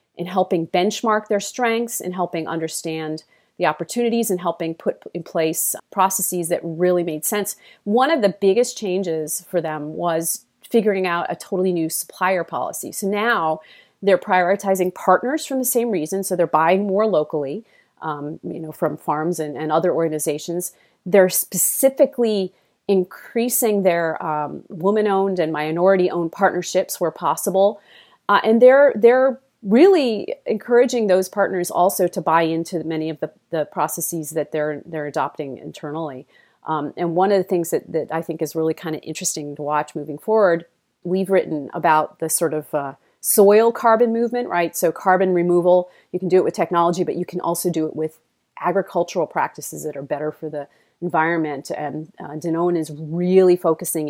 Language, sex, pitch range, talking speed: English, female, 160-195 Hz, 170 wpm